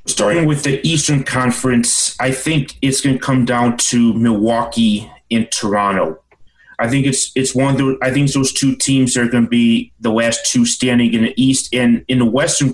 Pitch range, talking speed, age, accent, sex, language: 115-140 Hz, 205 wpm, 30-49, American, male, English